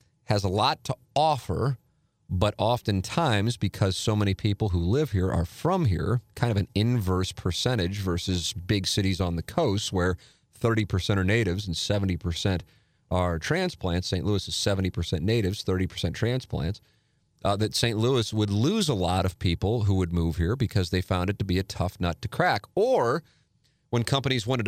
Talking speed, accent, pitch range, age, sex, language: 175 wpm, American, 95-120 Hz, 40-59, male, English